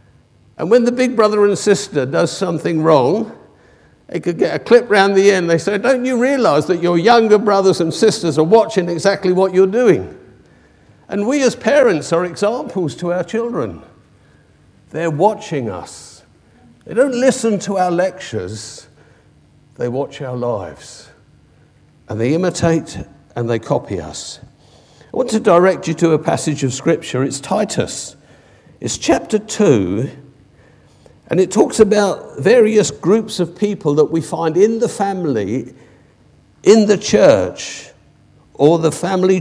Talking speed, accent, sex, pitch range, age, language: 150 wpm, British, male, 155-210 Hz, 50-69, English